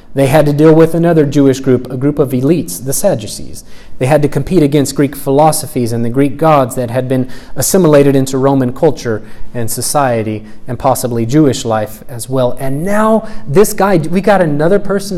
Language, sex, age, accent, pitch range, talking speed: English, male, 30-49, American, 125-160 Hz, 190 wpm